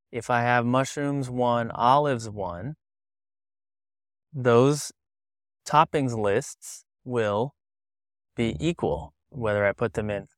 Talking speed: 105 wpm